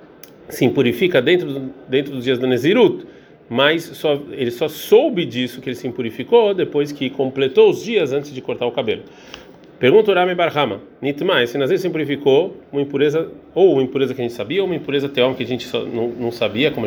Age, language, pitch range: 40-59, Portuguese, 130-175 Hz